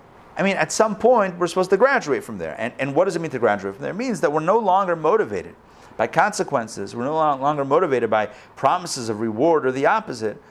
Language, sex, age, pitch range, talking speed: English, male, 40-59, 130-185 Hz, 235 wpm